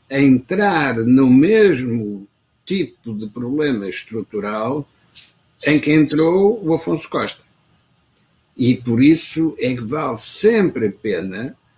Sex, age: male, 60-79